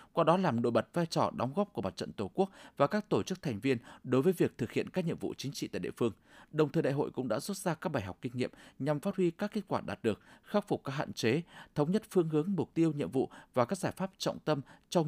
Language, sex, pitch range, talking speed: Vietnamese, male, 120-165 Hz, 295 wpm